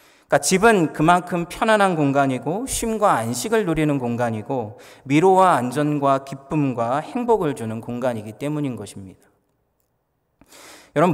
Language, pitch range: Korean, 125-175 Hz